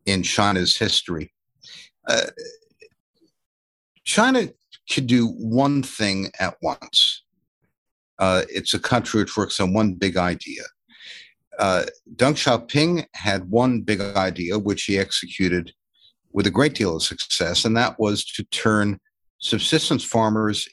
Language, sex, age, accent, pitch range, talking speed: English, male, 60-79, American, 95-140 Hz, 125 wpm